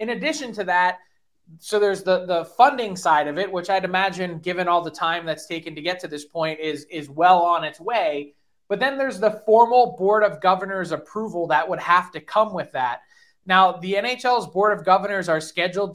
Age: 20-39